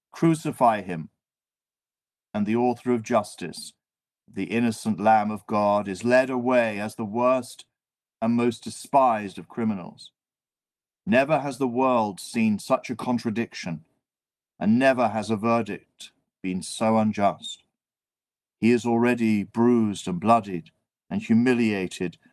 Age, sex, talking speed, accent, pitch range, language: 50-69, male, 125 wpm, British, 105-125 Hz, English